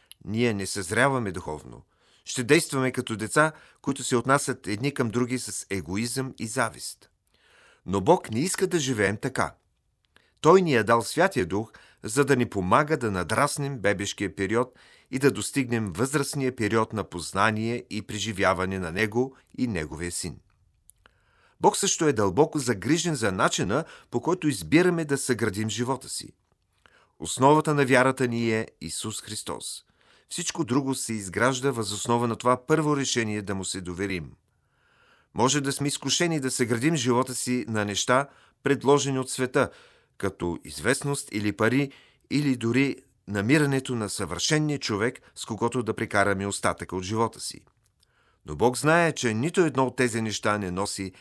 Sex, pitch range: male, 100-135 Hz